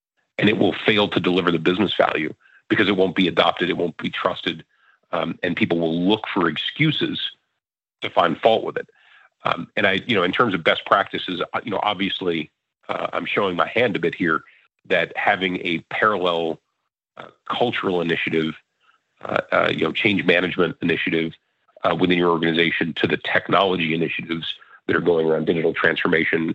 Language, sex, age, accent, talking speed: English, male, 40-59, American, 180 wpm